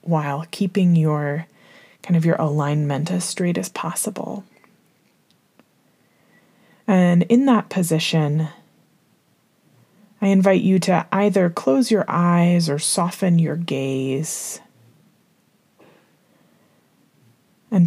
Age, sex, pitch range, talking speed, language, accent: 20-39, female, 160-205 Hz, 95 wpm, English, American